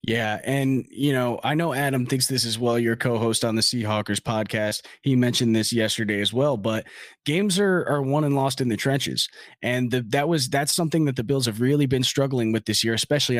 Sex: male